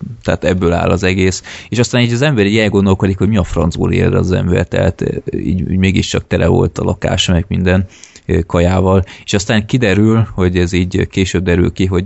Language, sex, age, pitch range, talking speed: Hungarian, male, 20-39, 85-100 Hz, 190 wpm